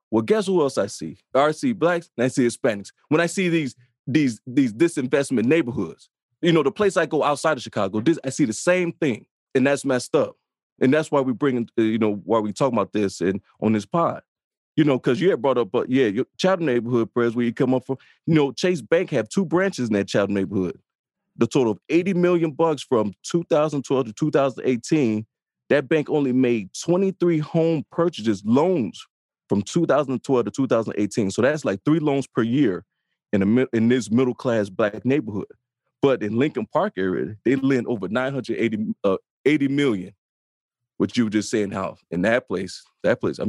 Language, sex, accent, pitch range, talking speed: English, male, American, 115-165 Hz, 205 wpm